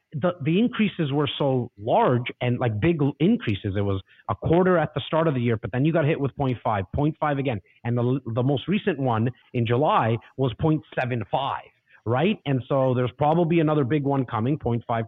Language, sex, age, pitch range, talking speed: English, male, 30-49, 115-150 Hz, 195 wpm